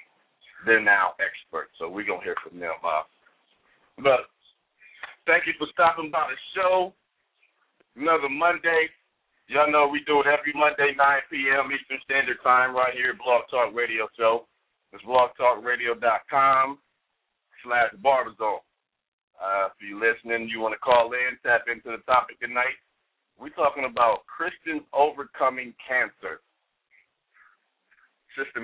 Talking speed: 130 wpm